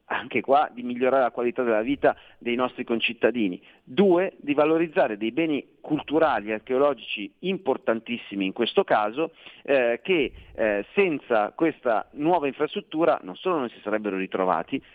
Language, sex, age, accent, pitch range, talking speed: Italian, male, 40-59, native, 120-195 Hz, 145 wpm